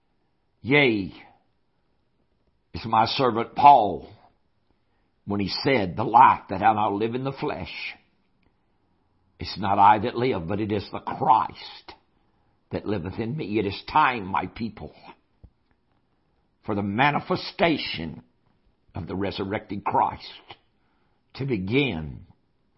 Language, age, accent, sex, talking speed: English, 60-79, American, male, 120 wpm